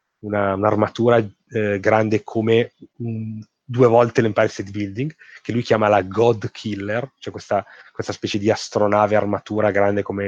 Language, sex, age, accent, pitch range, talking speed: Italian, male, 30-49, native, 100-120 Hz, 150 wpm